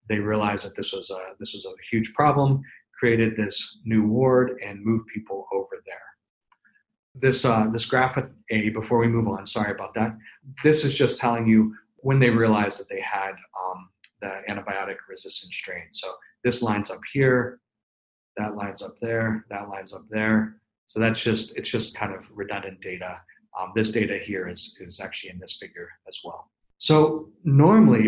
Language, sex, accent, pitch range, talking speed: English, male, American, 105-130 Hz, 175 wpm